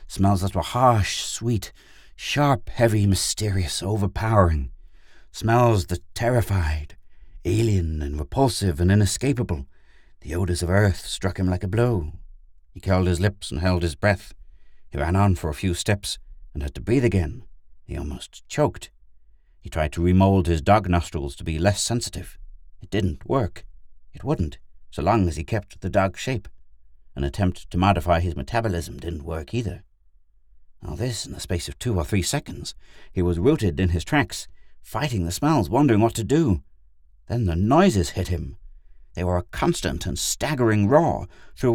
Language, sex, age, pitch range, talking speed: English, male, 60-79, 85-115 Hz, 170 wpm